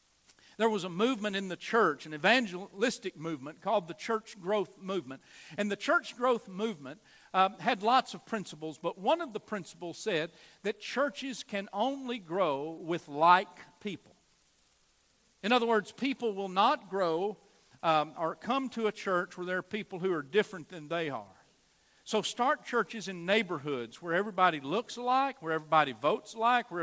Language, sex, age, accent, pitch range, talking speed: English, male, 50-69, American, 170-230 Hz, 170 wpm